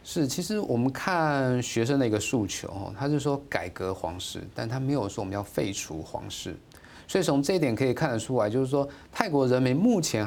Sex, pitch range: male, 100-140 Hz